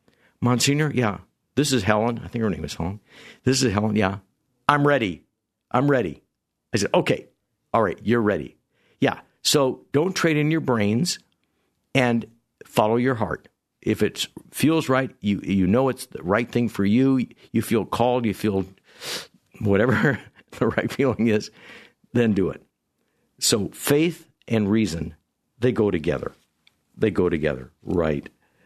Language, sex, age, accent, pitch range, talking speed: English, male, 60-79, American, 105-135 Hz, 155 wpm